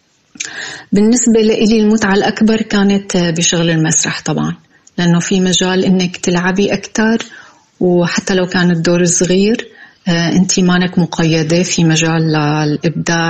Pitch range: 170-190 Hz